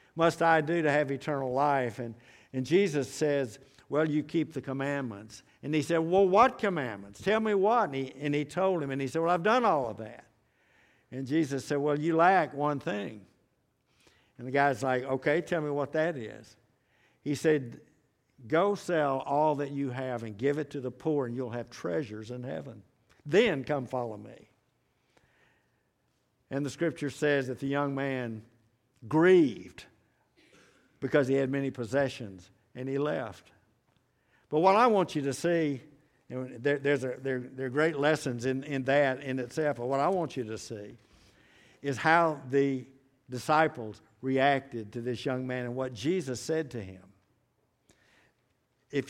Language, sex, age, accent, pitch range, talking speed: English, male, 60-79, American, 125-150 Hz, 175 wpm